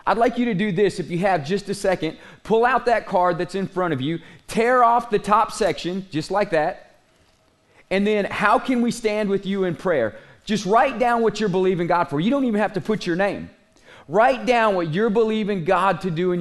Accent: American